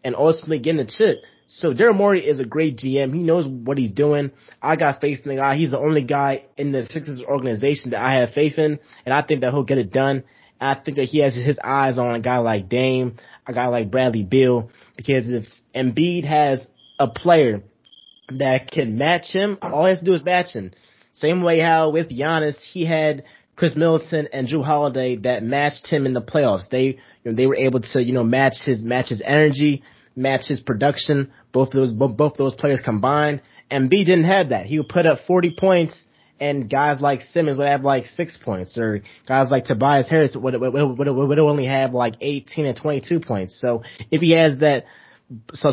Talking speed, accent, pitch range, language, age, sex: 215 wpm, American, 130-155 Hz, English, 20-39, male